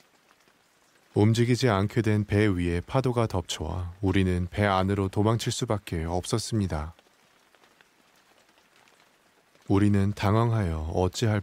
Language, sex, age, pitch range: Korean, male, 30-49, 90-110 Hz